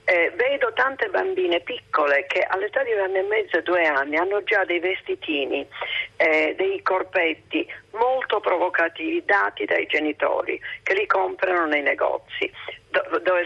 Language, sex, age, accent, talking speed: Italian, female, 40-59, native, 145 wpm